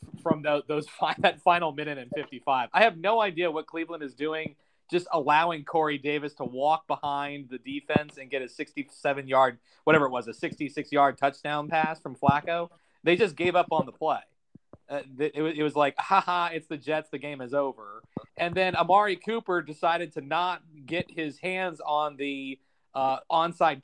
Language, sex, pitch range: English, male, 140-170 Hz